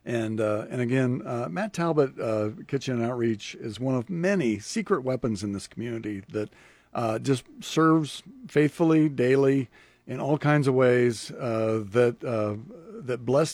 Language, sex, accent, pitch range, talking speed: English, male, American, 110-145 Hz, 155 wpm